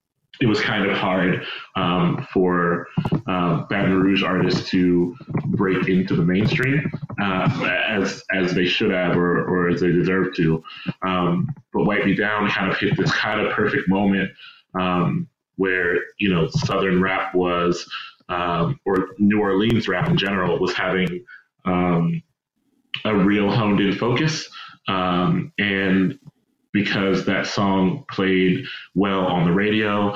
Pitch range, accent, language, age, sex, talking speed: 90-105 Hz, American, English, 30-49, male, 145 wpm